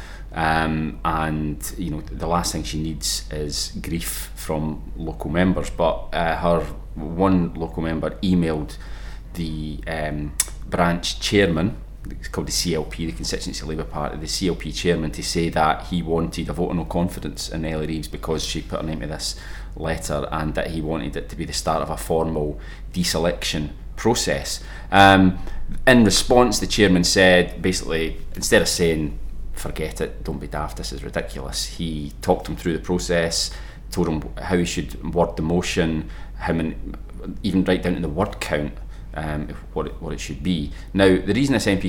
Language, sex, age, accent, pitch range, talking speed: English, male, 30-49, British, 75-90 Hz, 180 wpm